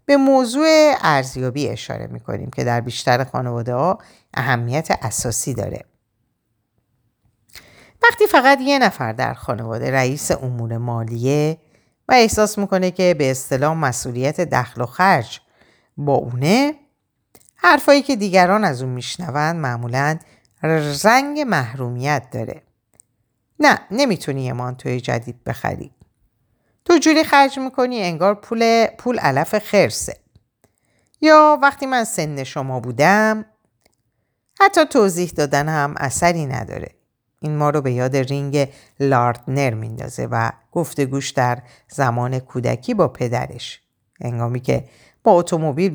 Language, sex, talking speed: Persian, female, 120 wpm